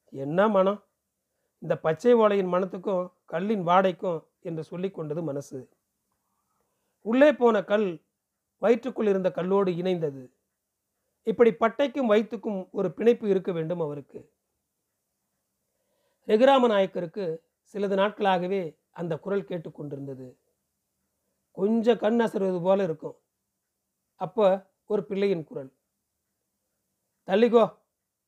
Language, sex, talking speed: Tamil, male, 90 wpm